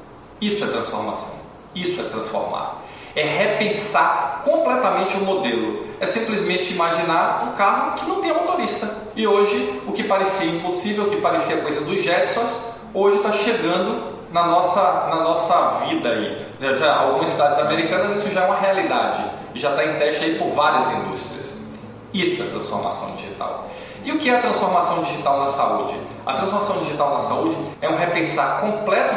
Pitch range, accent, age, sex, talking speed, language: 170-215 Hz, Brazilian, 20-39, male, 160 wpm, Portuguese